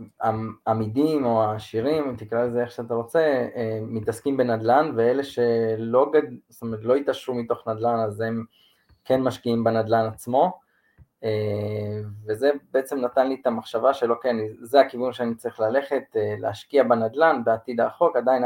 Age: 20-39